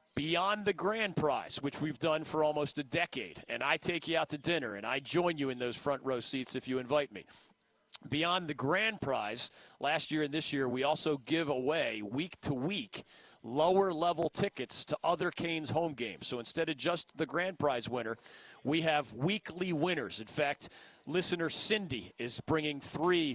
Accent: American